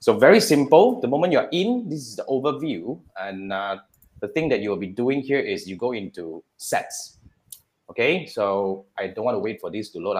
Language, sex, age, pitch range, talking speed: English, male, 20-39, 105-160 Hz, 220 wpm